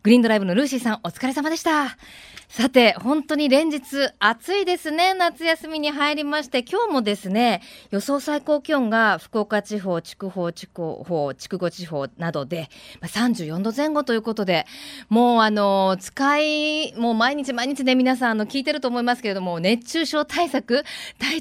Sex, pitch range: female, 200-300 Hz